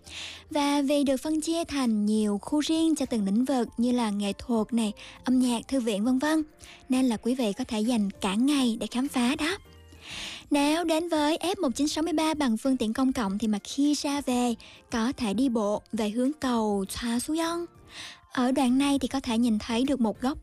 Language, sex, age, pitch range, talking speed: Vietnamese, male, 20-39, 230-295 Hz, 210 wpm